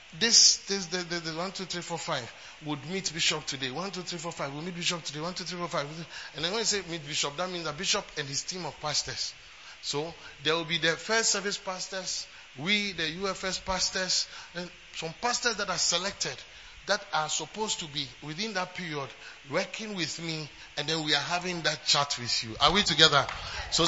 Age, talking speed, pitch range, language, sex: 30-49, 190 wpm, 160-210 Hz, English, male